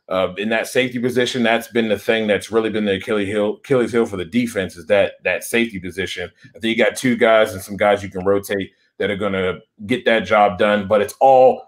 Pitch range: 100-120 Hz